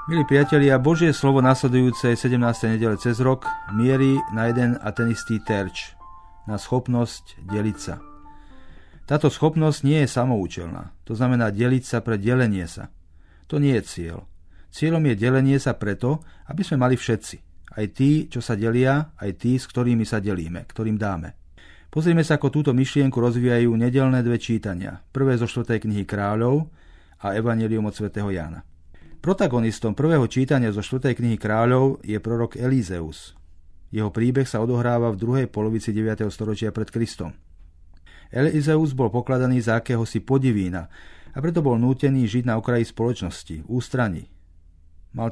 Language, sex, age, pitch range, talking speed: Slovak, male, 40-59, 100-125 Hz, 150 wpm